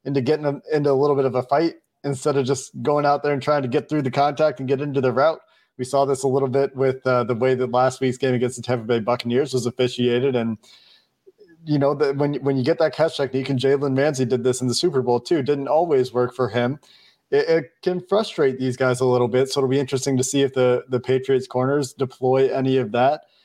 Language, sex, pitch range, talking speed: English, male, 125-140 Hz, 250 wpm